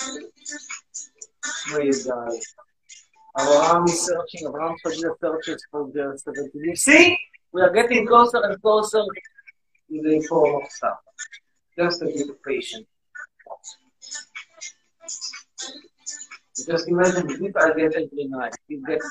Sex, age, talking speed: male, 50-69, 110 wpm